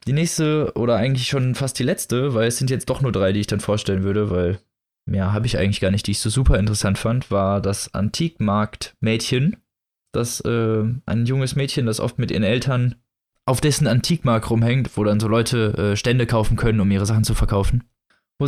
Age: 20-39